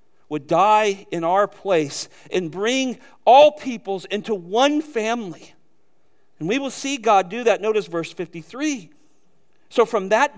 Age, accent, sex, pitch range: 40-59, American, male, 175-235 Hz